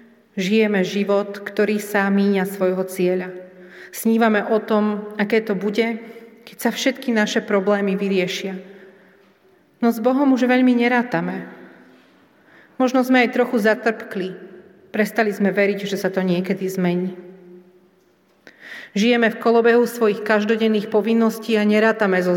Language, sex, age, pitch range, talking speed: Slovak, female, 40-59, 190-230 Hz, 125 wpm